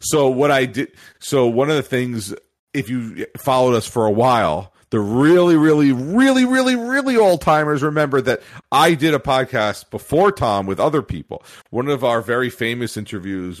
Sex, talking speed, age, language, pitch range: male, 180 wpm, 40-59, English, 95-130 Hz